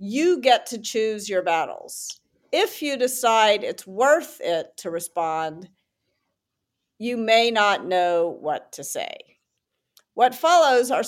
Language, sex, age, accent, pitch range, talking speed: English, female, 50-69, American, 190-250 Hz, 130 wpm